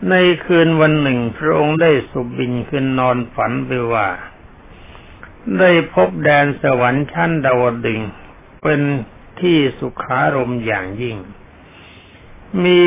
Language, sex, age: Thai, male, 60-79